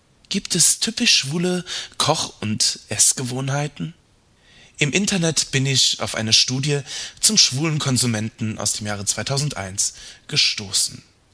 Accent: German